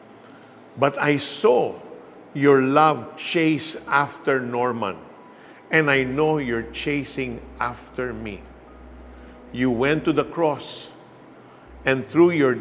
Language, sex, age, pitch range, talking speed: Filipino, male, 50-69, 110-145 Hz, 110 wpm